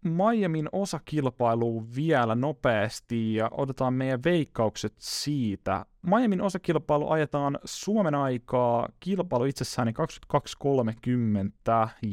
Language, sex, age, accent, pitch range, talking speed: Finnish, male, 30-49, native, 115-150 Hz, 85 wpm